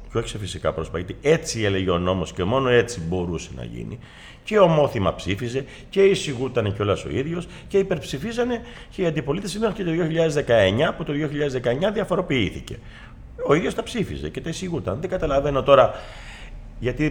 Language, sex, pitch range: Greek, male, 105-160 Hz